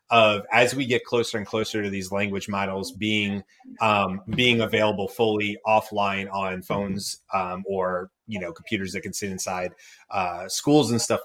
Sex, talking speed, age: male, 170 wpm, 30-49